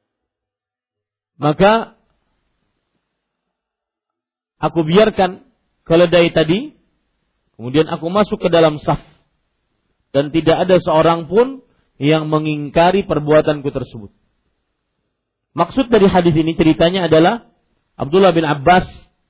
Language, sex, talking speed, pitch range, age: Malay, male, 90 wpm, 150-185 Hz, 40-59